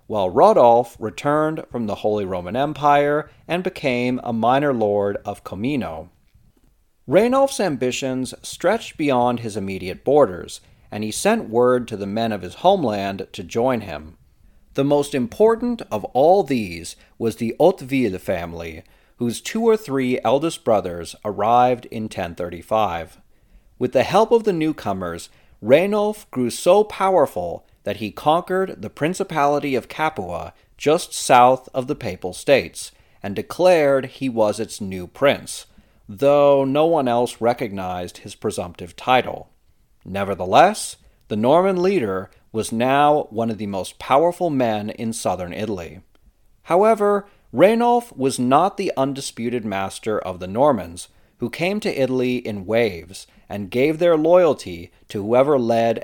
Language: English